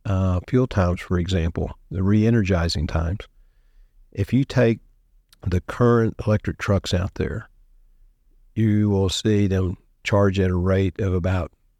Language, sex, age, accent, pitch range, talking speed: English, male, 50-69, American, 90-110 Hz, 135 wpm